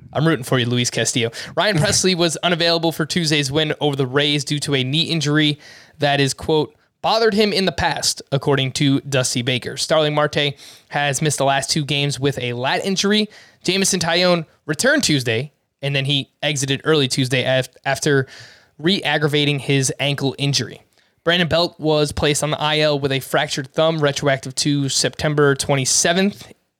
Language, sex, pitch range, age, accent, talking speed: English, male, 135-160 Hz, 20-39, American, 170 wpm